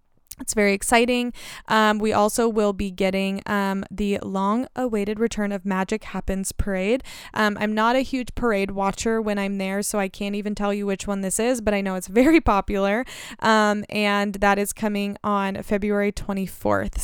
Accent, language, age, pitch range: American, English, 20-39, 195-220 Hz